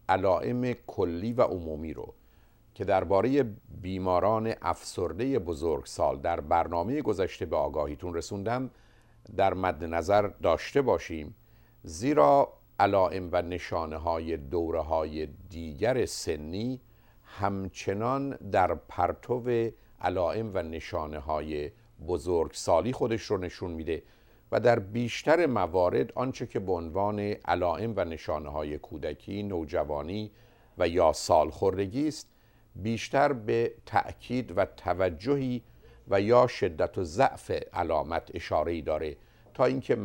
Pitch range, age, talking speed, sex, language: 85-115 Hz, 50-69, 115 wpm, male, Persian